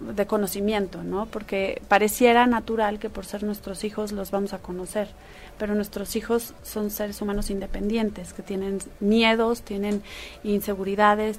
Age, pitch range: 30-49, 200-235 Hz